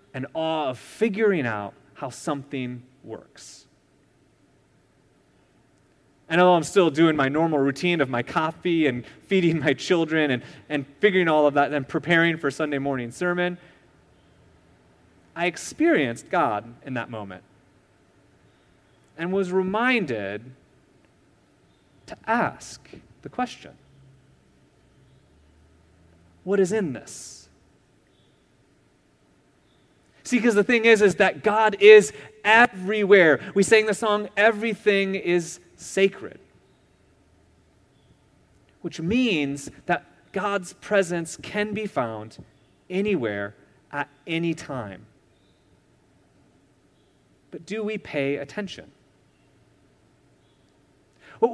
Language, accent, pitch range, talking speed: English, American, 120-195 Hz, 100 wpm